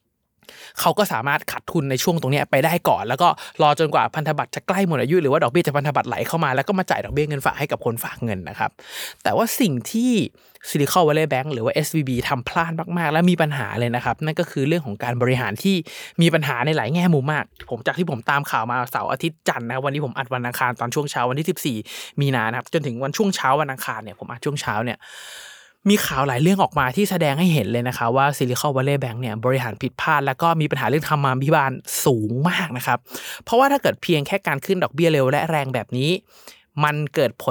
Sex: male